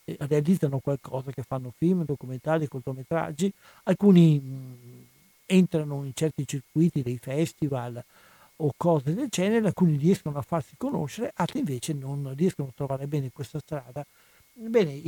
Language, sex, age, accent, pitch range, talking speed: Italian, male, 60-79, native, 130-165 Hz, 135 wpm